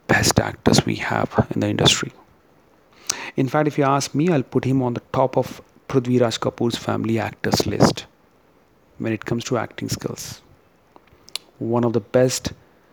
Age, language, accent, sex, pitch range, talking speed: 40-59, Hindi, native, male, 115-140 Hz, 165 wpm